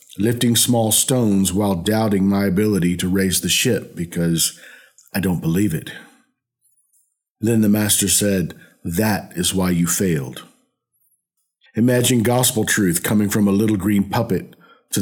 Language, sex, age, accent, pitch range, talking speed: English, male, 50-69, American, 100-120 Hz, 140 wpm